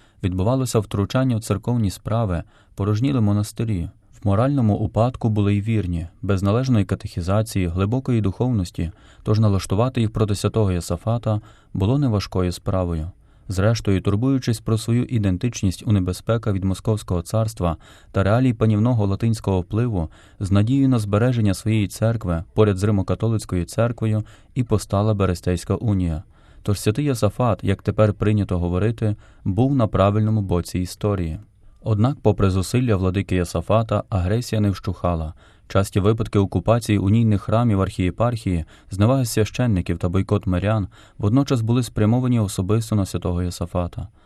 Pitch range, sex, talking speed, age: 95-115 Hz, male, 125 wpm, 20-39